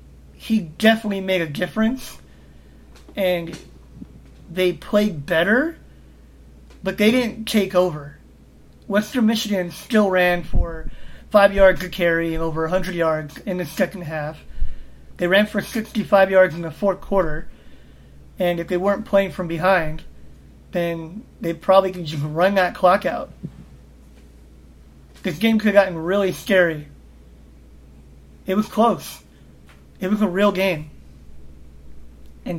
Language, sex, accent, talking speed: English, male, American, 135 wpm